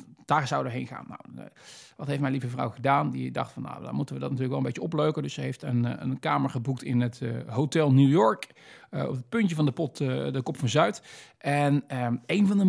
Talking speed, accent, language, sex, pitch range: 255 wpm, Dutch, Dutch, male, 130-160 Hz